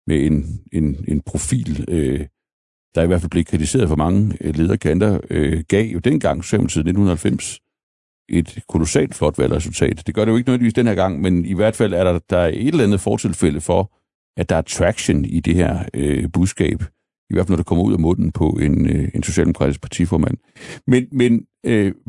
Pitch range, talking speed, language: 85-110 Hz, 205 wpm, Danish